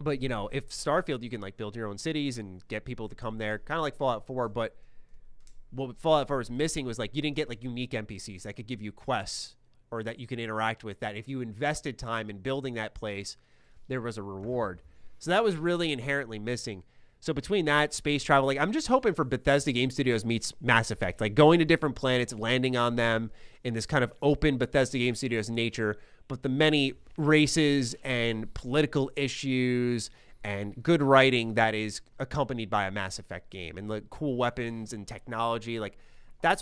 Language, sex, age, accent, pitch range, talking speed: English, male, 30-49, American, 110-140 Hz, 205 wpm